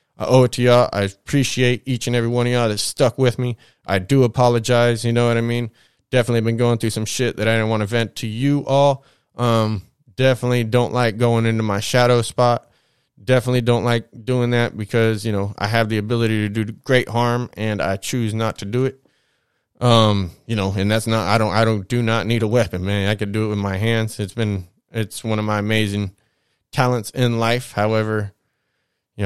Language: English